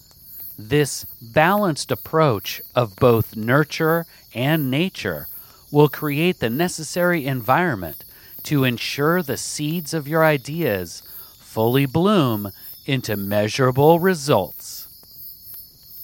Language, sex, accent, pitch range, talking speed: English, male, American, 115-160 Hz, 95 wpm